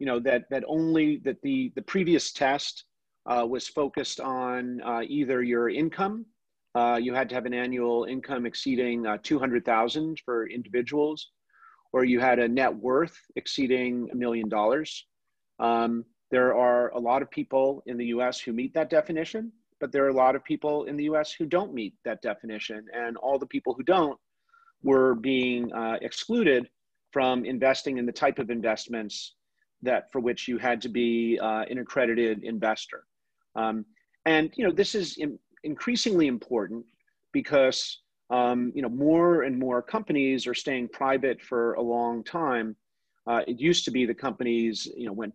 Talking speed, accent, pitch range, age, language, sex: 165 wpm, American, 120-150 Hz, 40-59, English, male